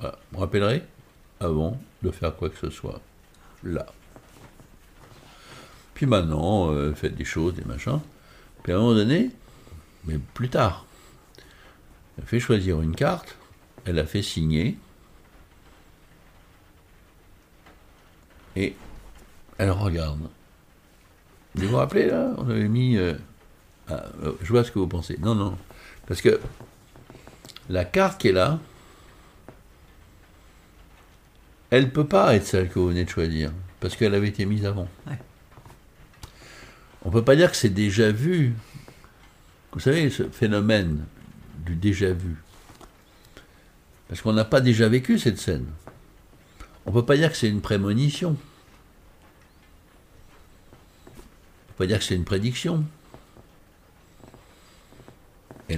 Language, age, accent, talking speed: French, 60-79, French, 135 wpm